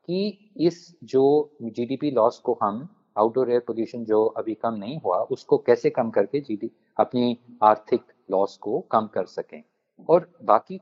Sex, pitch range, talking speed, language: male, 110-155 Hz, 160 wpm, Hindi